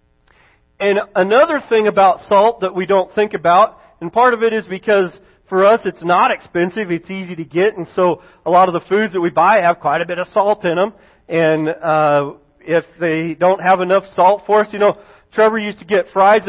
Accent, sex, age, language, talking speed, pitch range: American, male, 40-59, English, 220 wpm, 175-220 Hz